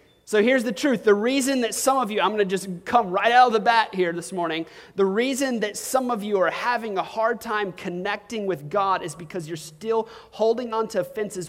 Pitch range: 175-215 Hz